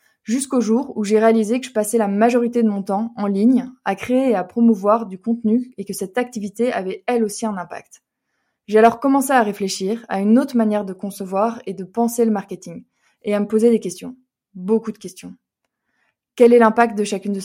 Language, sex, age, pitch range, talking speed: French, female, 20-39, 195-230 Hz, 215 wpm